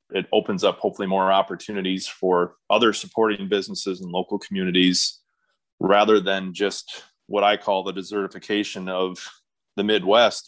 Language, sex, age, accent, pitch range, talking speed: English, male, 30-49, American, 95-115 Hz, 135 wpm